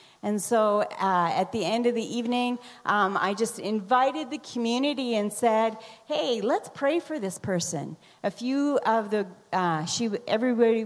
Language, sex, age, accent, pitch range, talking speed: English, female, 40-59, American, 195-245 Hz, 165 wpm